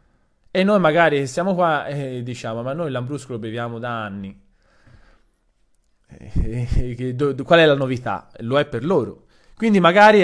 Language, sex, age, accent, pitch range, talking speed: Italian, male, 20-39, native, 120-170 Hz, 145 wpm